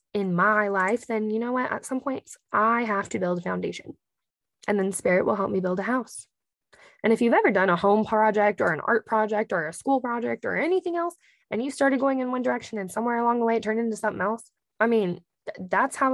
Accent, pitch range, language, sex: American, 195-240 Hz, English, female